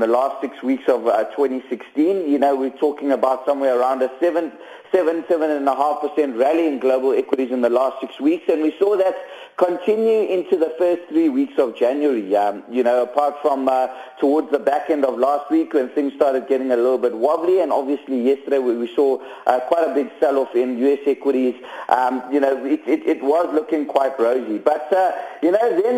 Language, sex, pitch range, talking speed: English, male, 135-165 Hz, 215 wpm